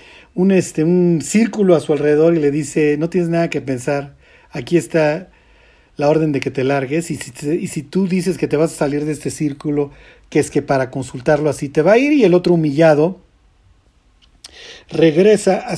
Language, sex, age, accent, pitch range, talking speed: Spanish, male, 50-69, Mexican, 150-205 Hz, 195 wpm